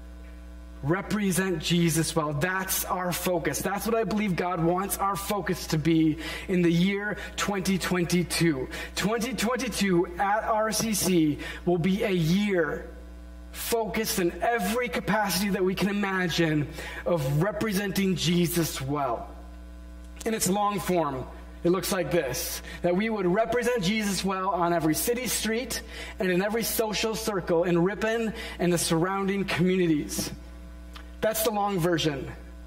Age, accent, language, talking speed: 30-49, American, English, 130 wpm